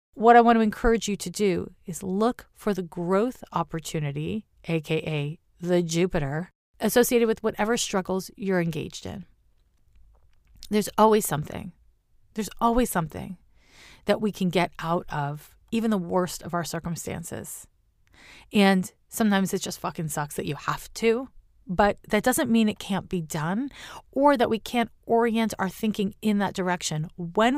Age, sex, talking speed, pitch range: 40-59, female, 155 wpm, 165-220 Hz